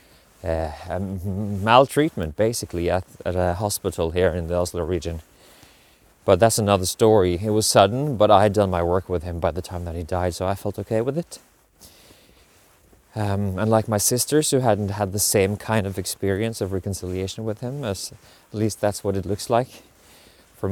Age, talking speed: 30-49, 190 wpm